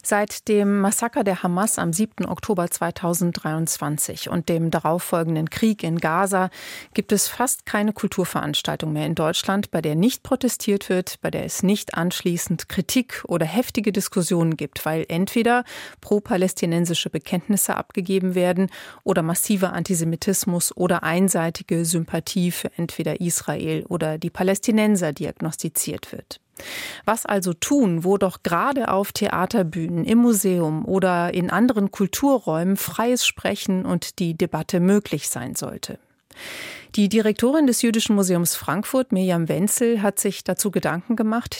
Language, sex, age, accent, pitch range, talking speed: German, female, 30-49, German, 170-205 Hz, 135 wpm